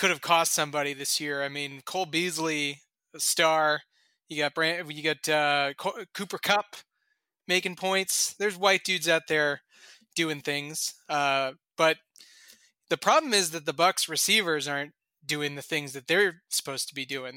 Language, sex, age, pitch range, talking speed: English, male, 20-39, 145-180 Hz, 165 wpm